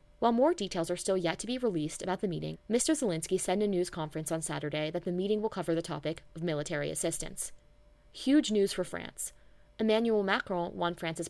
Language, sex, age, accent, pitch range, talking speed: English, female, 20-39, American, 155-215 Hz, 205 wpm